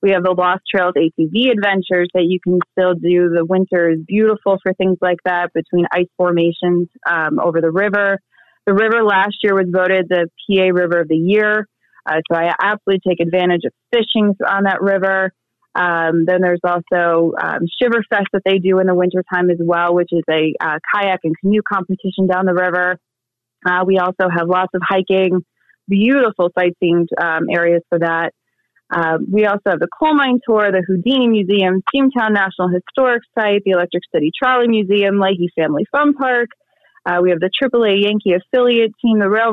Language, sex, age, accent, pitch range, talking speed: English, female, 20-39, American, 175-205 Hz, 185 wpm